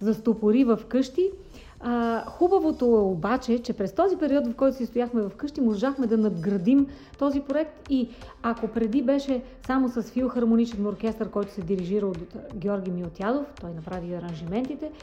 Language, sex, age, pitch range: Bulgarian, female, 40-59, 215-255 Hz